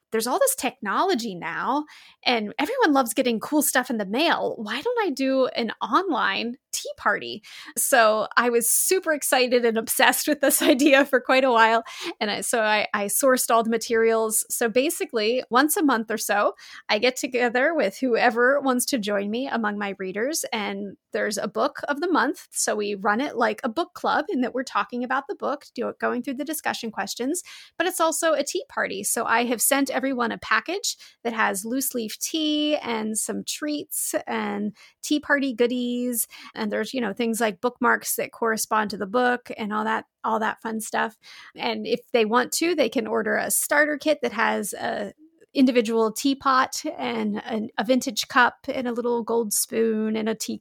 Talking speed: 190 wpm